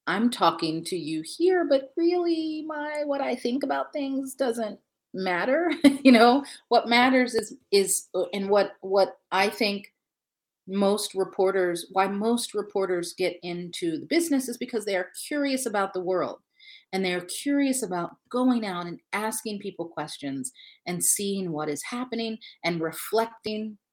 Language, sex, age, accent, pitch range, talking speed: English, female, 40-59, American, 165-225 Hz, 155 wpm